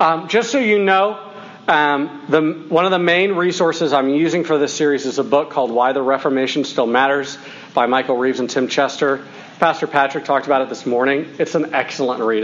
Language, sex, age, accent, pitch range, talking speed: English, male, 40-59, American, 135-190 Hz, 205 wpm